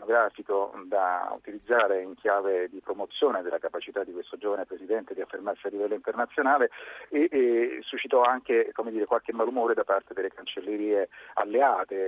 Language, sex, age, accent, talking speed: Italian, male, 40-59, native, 155 wpm